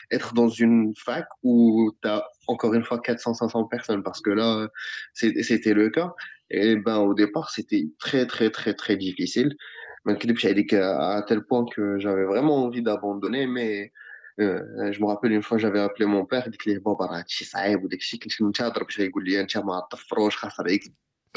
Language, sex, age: Arabic, male, 20-39